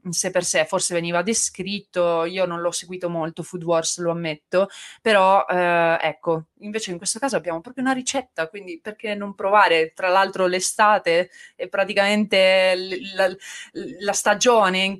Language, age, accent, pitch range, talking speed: Italian, 20-39, native, 170-200 Hz, 150 wpm